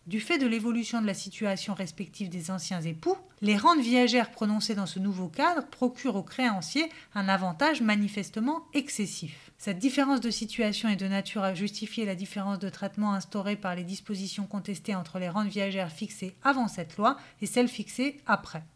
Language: French